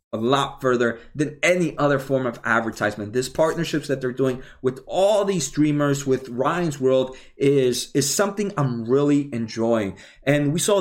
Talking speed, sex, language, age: 160 wpm, male, English, 30-49